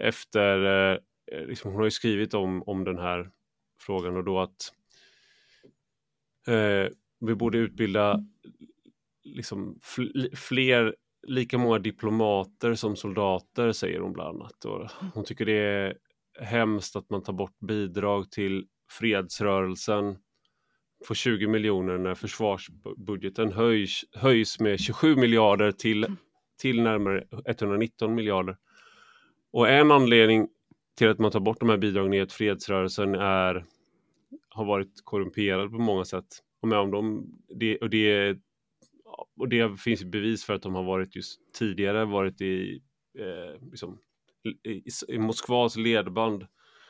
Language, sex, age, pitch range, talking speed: Swedish, male, 30-49, 100-115 Hz, 130 wpm